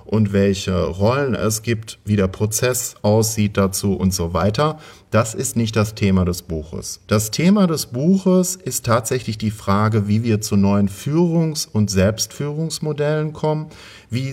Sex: male